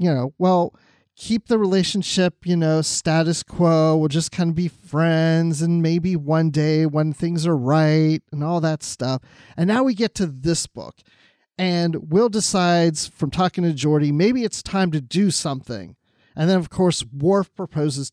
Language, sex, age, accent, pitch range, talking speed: English, male, 40-59, American, 140-185 Hz, 180 wpm